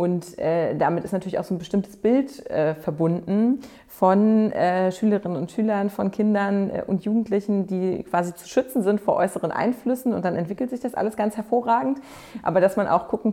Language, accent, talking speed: German, German, 195 wpm